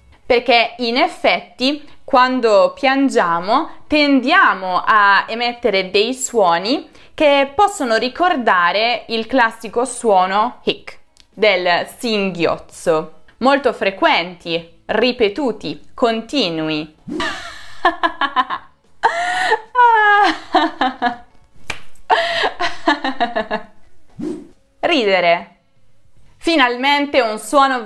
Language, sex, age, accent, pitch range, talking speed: Italian, female, 20-39, native, 205-290 Hz, 60 wpm